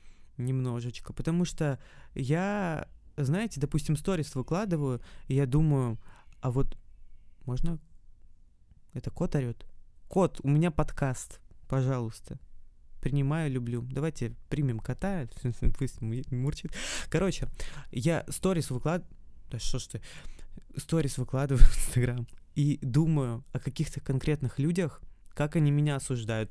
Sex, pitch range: male, 125-150 Hz